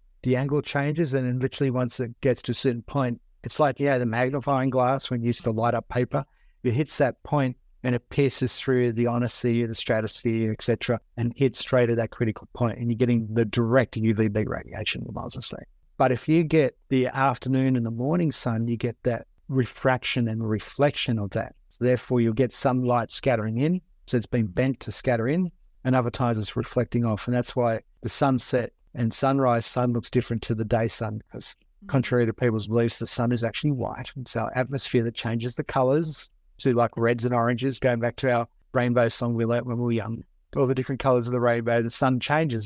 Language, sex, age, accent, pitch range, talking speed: English, male, 50-69, Australian, 115-135 Hz, 220 wpm